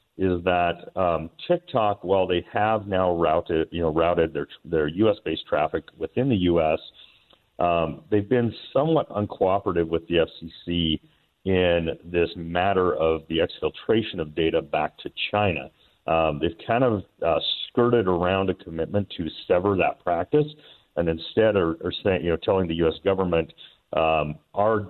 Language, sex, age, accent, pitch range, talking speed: English, male, 40-59, American, 80-95 Hz, 155 wpm